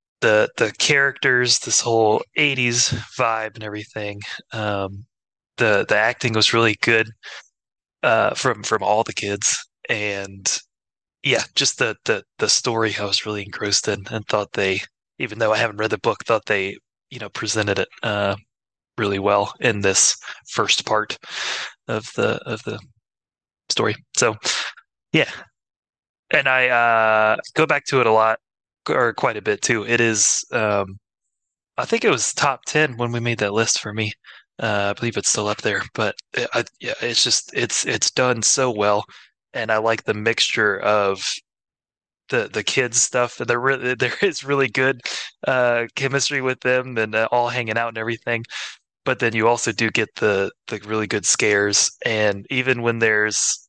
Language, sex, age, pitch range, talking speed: English, male, 20-39, 105-125 Hz, 170 wpm